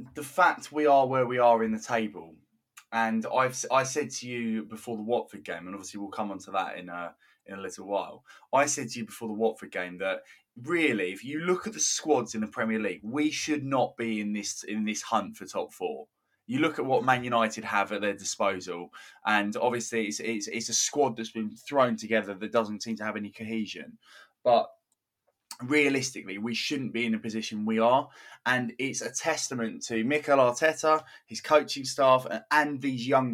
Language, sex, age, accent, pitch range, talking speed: English, male, 20-39, British, 110-130 Hz, 210 wpm